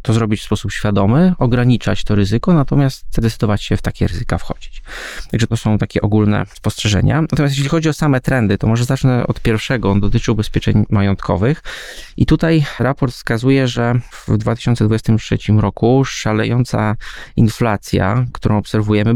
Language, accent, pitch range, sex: Polish, native, 100-120 Hz, male